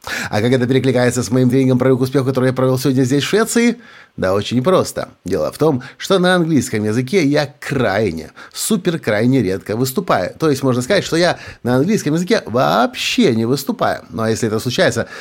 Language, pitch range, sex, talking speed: Russian, 115-155 Hz, male, 195 wpm